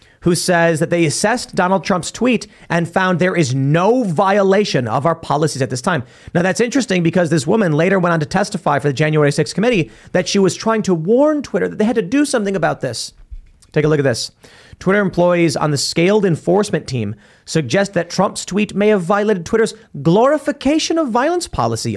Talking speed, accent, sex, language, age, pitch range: 205 wpm, American, male, English, 30-49, 145-205 Hz